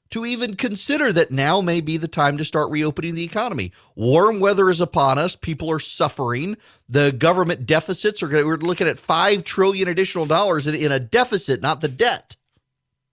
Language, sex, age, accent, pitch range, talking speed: English, male, 40-59, American, 120-170 Hz, 185 wpm